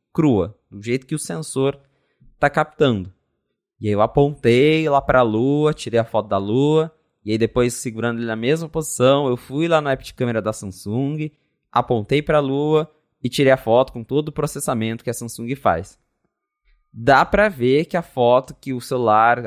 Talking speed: 195 wpm